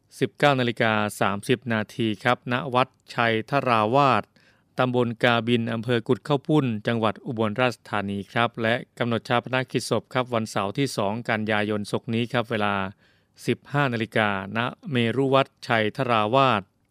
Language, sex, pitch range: Thai, male, 105-125 Hz